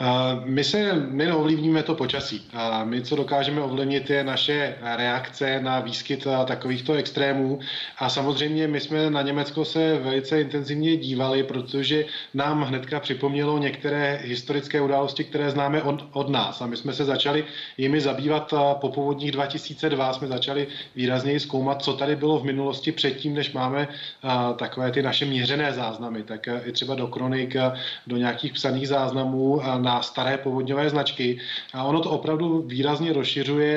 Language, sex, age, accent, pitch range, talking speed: Czech, male, 20-39, native, 130-145 Hz, 150 wpm